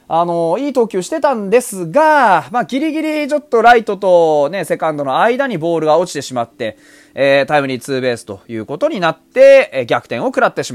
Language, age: Japanese, 20-39